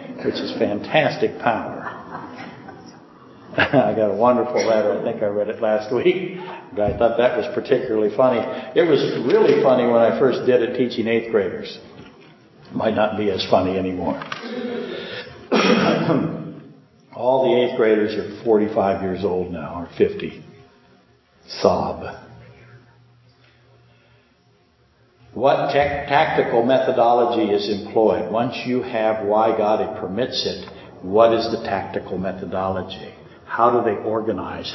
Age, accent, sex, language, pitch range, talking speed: 60-79, American, male, English, 105-120 Hz, 125 wpm